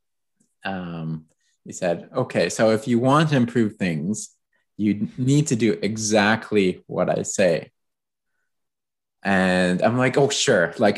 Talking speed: 135 wpm